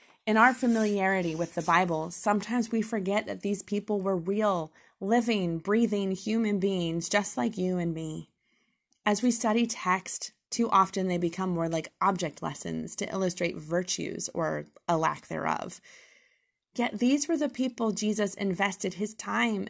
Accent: American